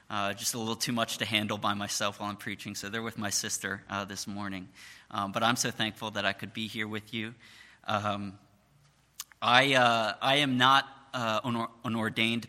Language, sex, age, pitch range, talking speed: English, male, 30-49, 105-125 Hz, 210 wpm